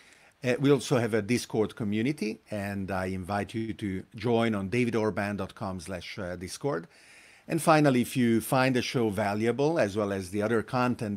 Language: English